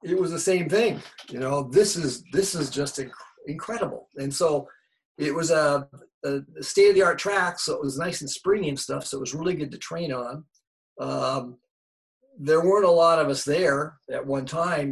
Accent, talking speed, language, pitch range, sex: American, 195 wpm, English, 135-175 Hz, male